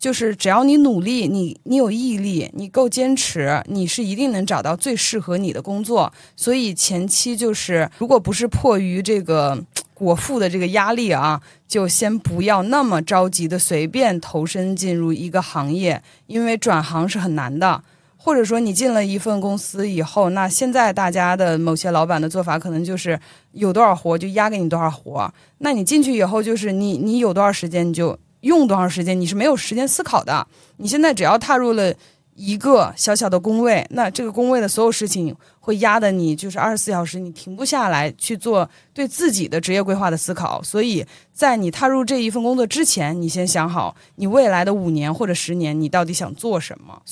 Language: Chinese